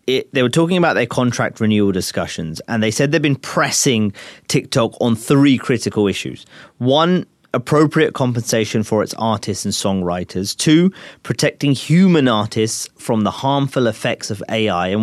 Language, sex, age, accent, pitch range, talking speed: English, male, 30-49, British, 100-130 Hz, 150 wpm